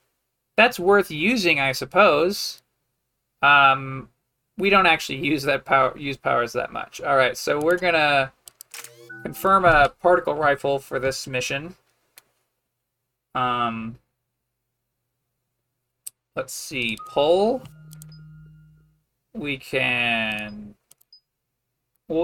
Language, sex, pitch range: English, male, 125-170 Hz